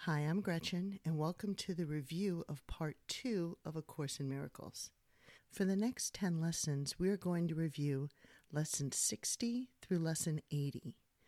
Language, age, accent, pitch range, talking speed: English, 50-69, American, 150-185 Hz, 165 wpm